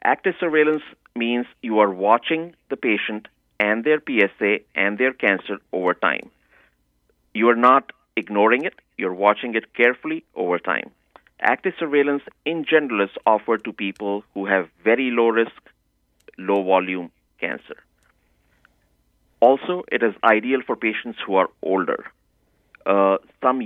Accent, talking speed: Indian, 135 wpm